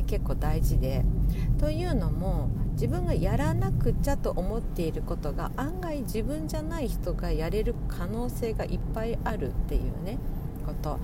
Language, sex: Japanese, female